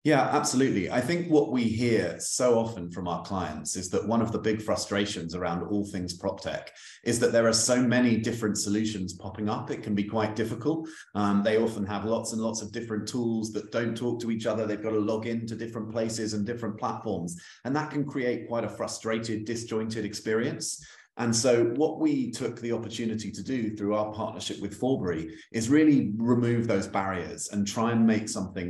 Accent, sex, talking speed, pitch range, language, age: British, male, 205 wpm, 100-115 Hz, English, 30-49